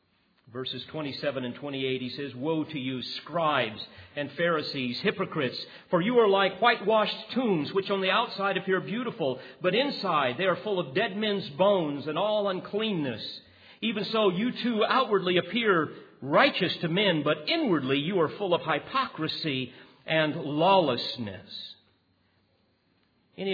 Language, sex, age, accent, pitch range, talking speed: English, male, 50-69, American, 130-185 Hz, 145 wpm